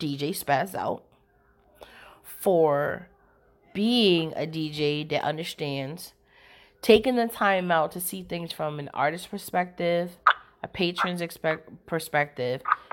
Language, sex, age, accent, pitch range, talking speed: English, female, 30-49, American, 150-200 Hz, 110 wpm